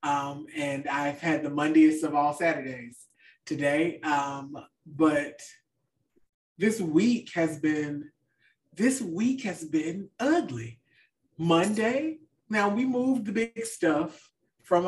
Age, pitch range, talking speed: 30-49, 145-180 Hz, 115 wpm